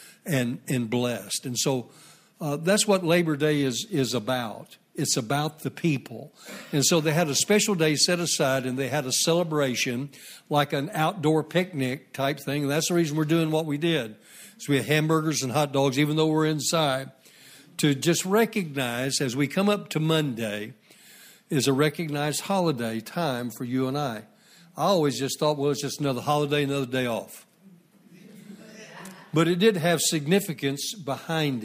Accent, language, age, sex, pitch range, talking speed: American, English, 60-79, male, 140-180 Hz, 175 wpm